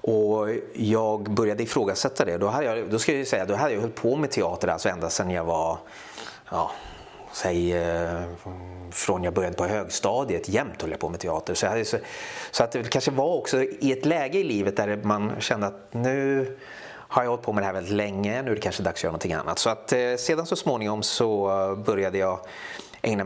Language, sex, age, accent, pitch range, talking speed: Swedish, male, 30-49, native, 95-125 Hz, 215 wpm